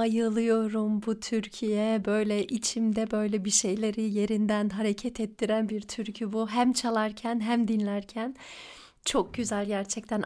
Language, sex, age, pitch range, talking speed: Turkish, female, 30-49, 215-280 Hz, 125 wpm